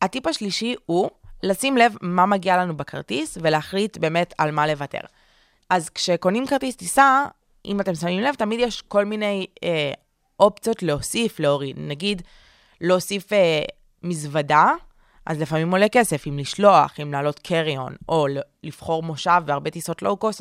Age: 20-39